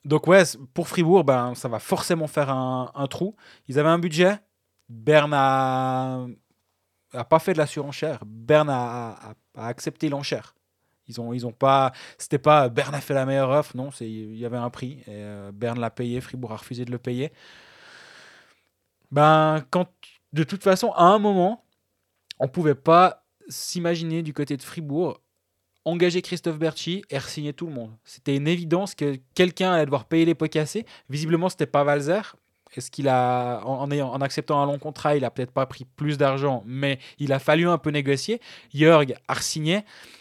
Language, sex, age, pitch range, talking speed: French, male, 20-39, 130-160 Hz, 190 wpm